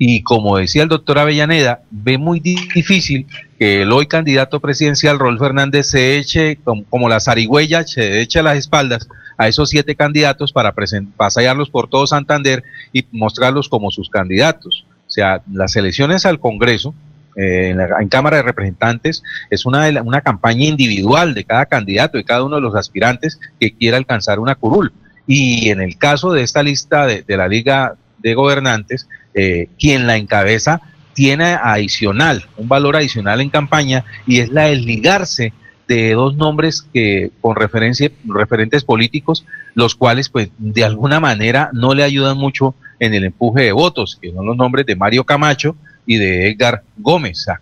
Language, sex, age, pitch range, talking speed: Spanish, male, 40-59, 110-150 Hz, 175 wpm